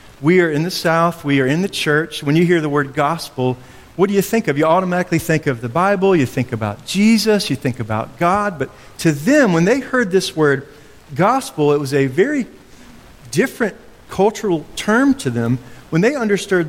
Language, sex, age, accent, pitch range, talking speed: English, male, 40-59, American, 135-185 Hz, 200 wpm